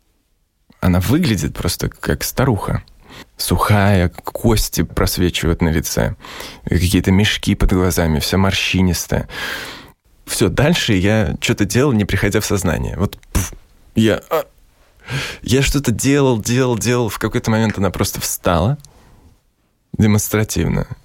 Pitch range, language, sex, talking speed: 90-115 Hz, Russian, male, 110 wpm